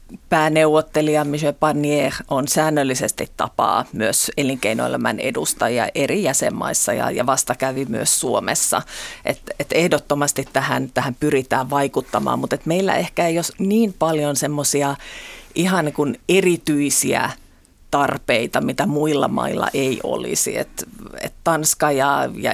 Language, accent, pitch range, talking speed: Finnish, native, 135-155 Hz, 120 wpm